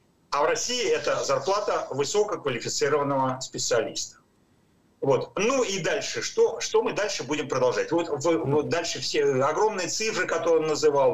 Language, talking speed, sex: Ukrainian, 145 wpm, male